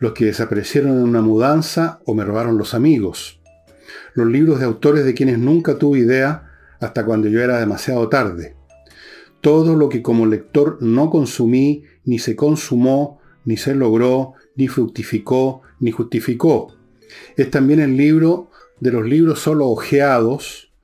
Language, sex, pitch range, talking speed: Spanish, male, 110-140 Hz, 150 wpm